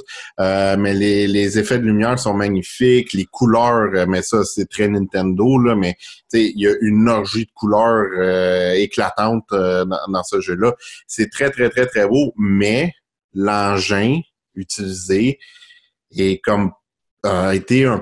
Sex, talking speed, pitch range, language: male, 165 wpm, 95-125 Hz, French